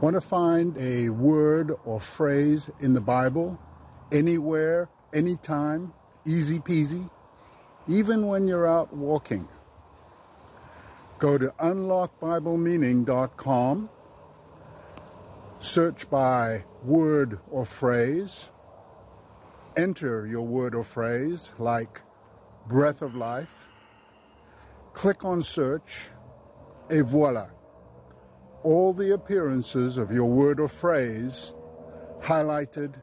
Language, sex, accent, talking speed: English, male, American, 90 wpm